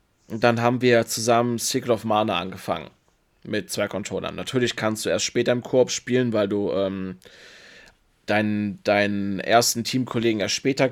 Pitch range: 105-125 Hz